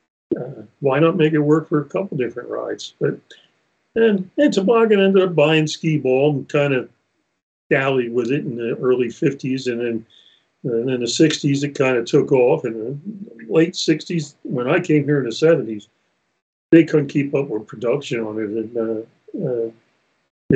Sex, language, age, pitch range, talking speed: male, English, 50-69, 120-160 Hz, 190 wpm